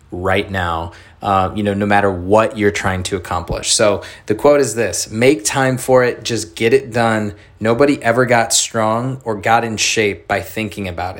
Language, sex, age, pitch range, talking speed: English, male, 20-39, 100-115 Hz, 195 wpm